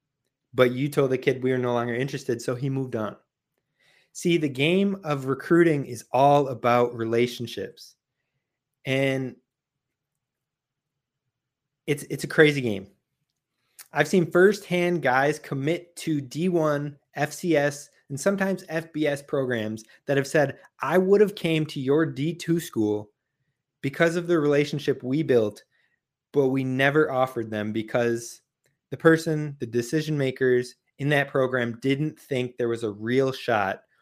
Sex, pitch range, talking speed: male, 130-160 Hz, 140 wpm